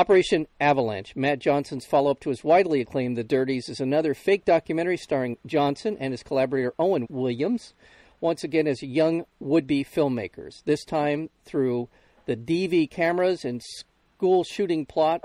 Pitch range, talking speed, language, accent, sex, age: 130-160 Hz, 150 wpm, English, American, male, 50-69